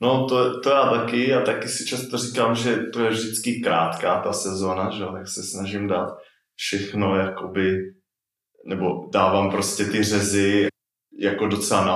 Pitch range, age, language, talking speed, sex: 95-115 Hz, 20-39, Czech, 155 wpm, male